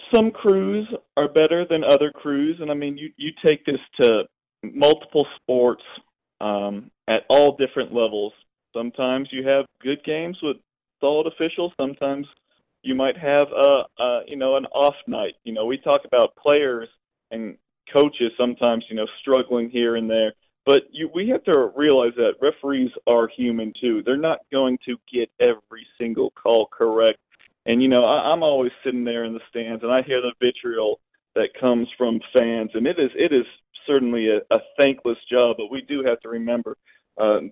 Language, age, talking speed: English, 40-59, 180 wpm